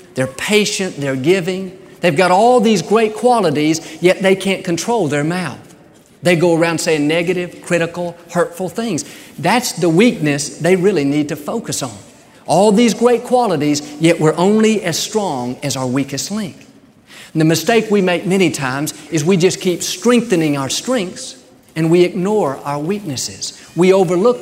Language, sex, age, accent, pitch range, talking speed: English, male, 50-69, American, 150-200 Hz, 165 wpm